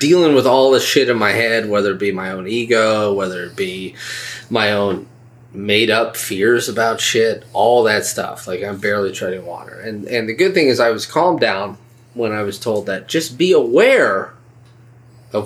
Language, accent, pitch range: English, American, 115-140 Hz